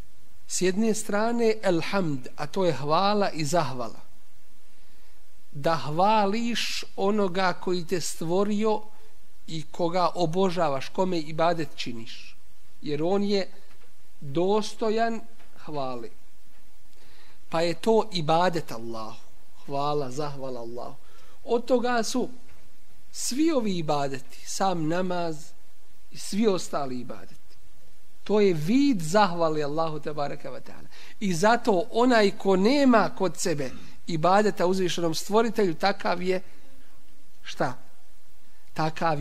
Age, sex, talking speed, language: 50-69, male, 105 wpm, English